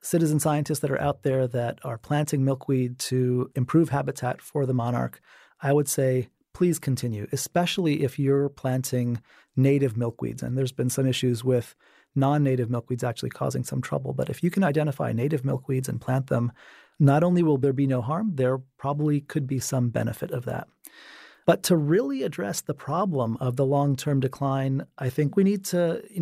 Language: English